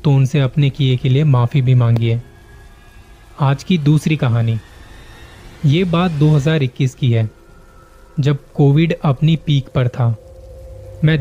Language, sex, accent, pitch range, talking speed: Hindi, male, native, 100-150 Hz, 140 wpm